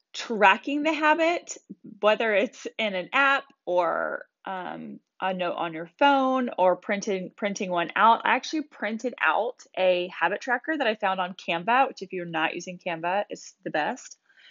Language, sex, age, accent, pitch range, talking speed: English, female, 20-39, American, 190-270 Hz, 170 wpm